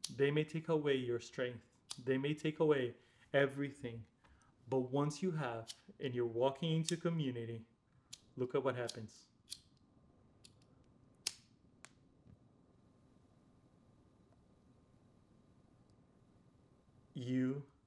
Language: English